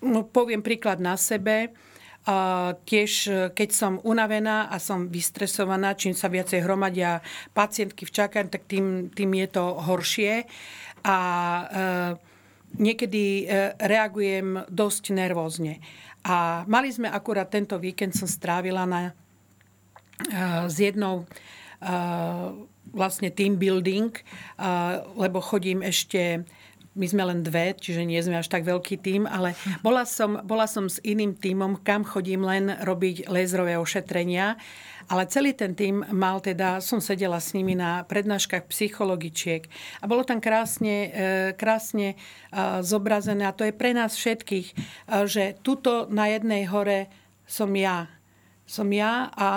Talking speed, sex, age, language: 130 wpm, female, 40-59, Slovak